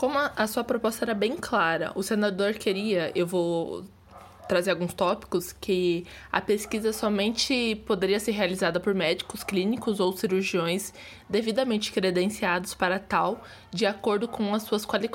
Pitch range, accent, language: 180-215 Hz, Brazilian, Portuguese